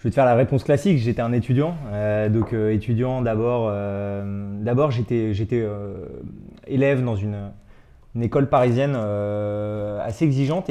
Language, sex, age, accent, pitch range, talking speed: French, male, 20-39, French, 105-125 Hz, 165 wpm